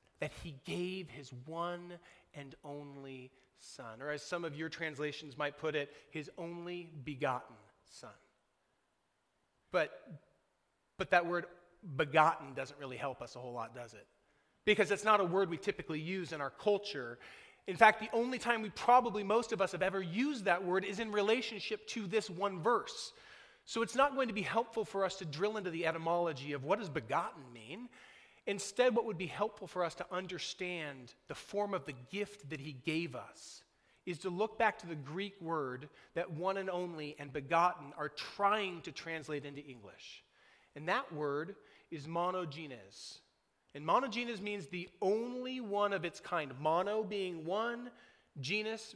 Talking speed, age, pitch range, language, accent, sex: 175 wpm, 30-49, 150-205 Hz, English, American, male